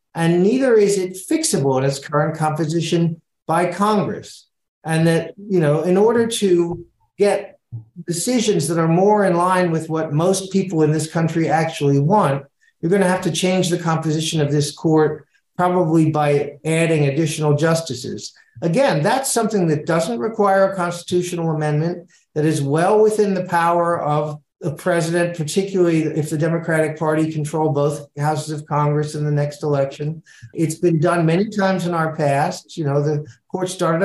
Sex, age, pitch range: male, 50-69, 150-180 Hz